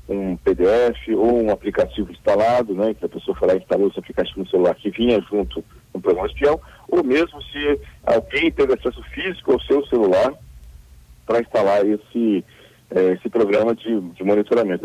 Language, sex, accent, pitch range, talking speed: Portuguese, male, Brazilian, 100-140 Hz, 175 wpm